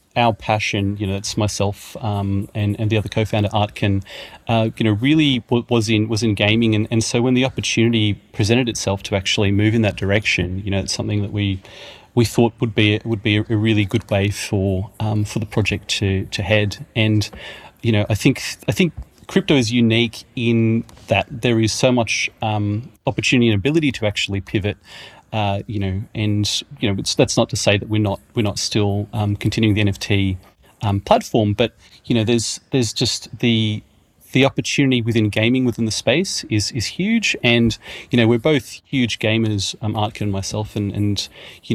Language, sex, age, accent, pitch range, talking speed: English, male, 30-49, Australian, 105-115 Hz, 200 wpm